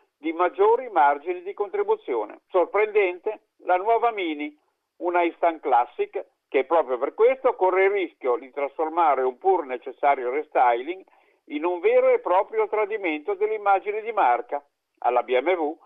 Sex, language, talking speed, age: male, Italian, 135 wpm, 50-69